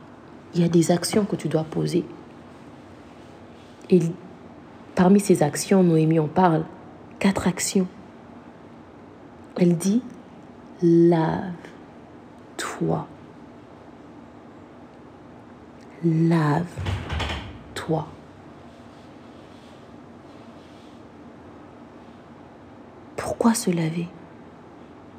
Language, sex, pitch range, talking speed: French, female, 160-195 Hz, 60 wpm